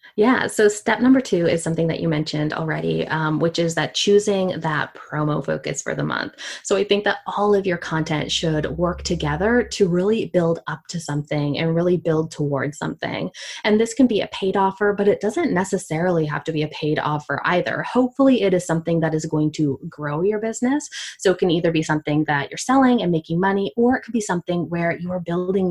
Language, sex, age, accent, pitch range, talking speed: English, female, 20-39, American, 155-205 Hz, 220 wpm